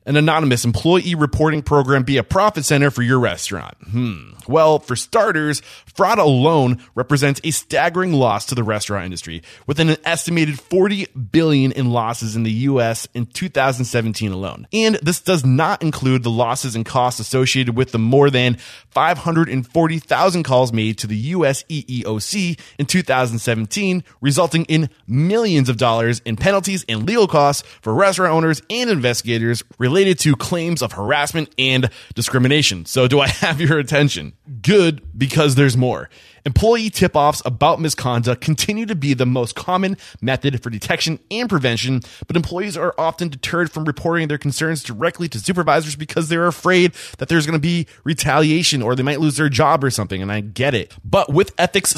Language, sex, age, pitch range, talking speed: English, male, 20-39, 125-165 Hz, 165 wpm